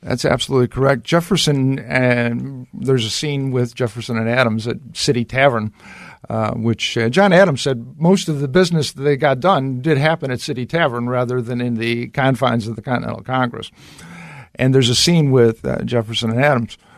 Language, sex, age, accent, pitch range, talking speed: English, male, 50-69, American, 115-135 Hz, 185 wpm